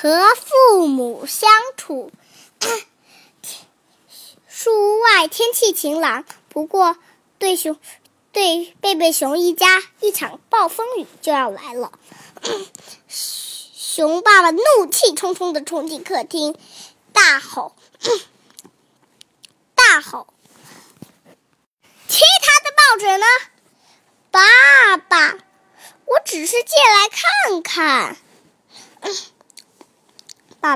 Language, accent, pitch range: Chinese, native, 315-415 Hz